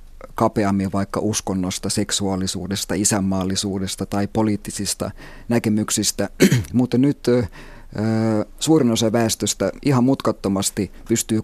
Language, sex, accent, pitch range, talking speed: Finnish, male, native, 100-120 Hz, 85 wpm